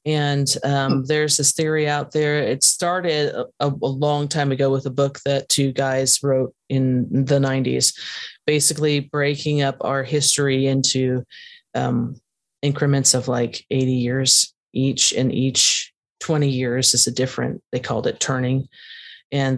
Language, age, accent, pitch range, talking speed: English, 30-49, American, 130-145 Hz, 150 wpm